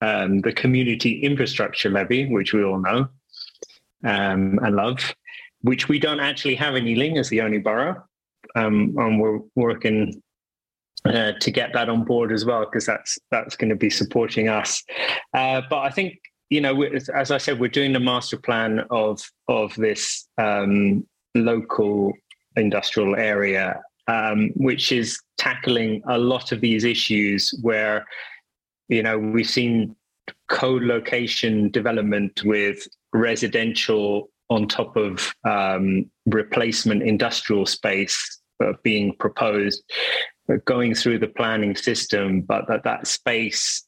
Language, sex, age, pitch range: English, male, 30-49, 105-125 Hz